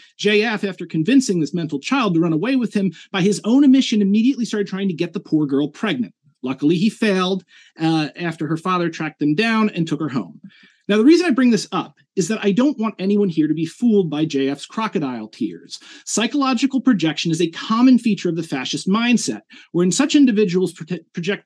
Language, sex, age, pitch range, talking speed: English, male, 30-49, 170-225 Hz, 205 wpm